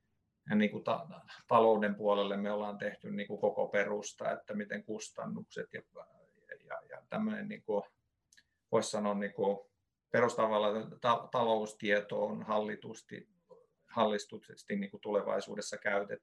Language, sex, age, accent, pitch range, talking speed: Finnish, male, 50-69, native, 105-120 Hz, 120 wpm